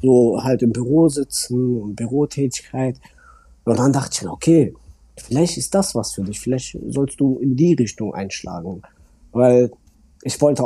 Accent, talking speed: German, 160 wpm